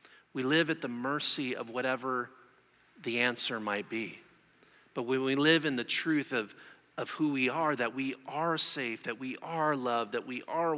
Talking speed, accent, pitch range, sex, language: 190 wpm, American, 125-160 Hz, male, English